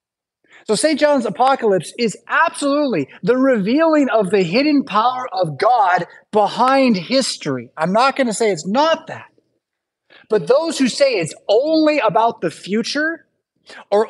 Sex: male